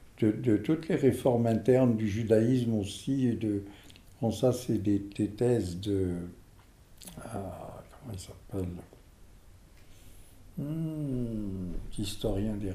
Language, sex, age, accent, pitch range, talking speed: French, male, 60-79, French, 100-140 Hz, 120 wpm